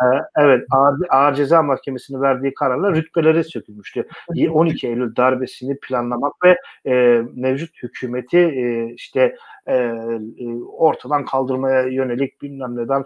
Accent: native